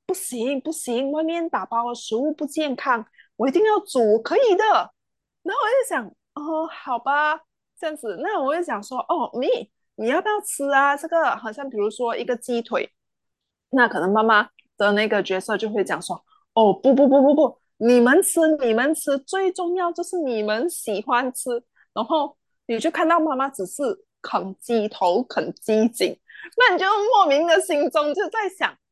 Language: English